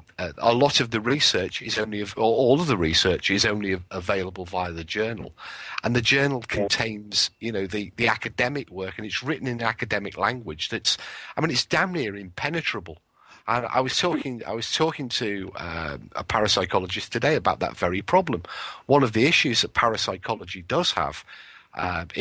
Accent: British